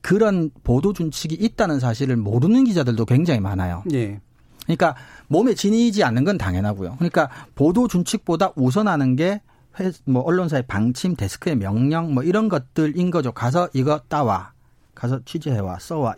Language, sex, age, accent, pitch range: Korean, male, 40-59, native, 130-185 Hz